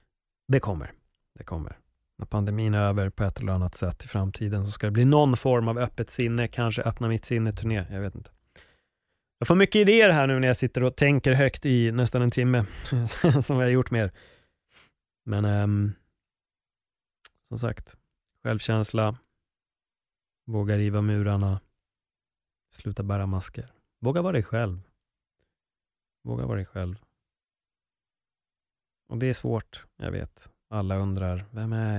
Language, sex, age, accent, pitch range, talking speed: Swedish, male, 30-49, native, 95-115 Hz, 155 wpm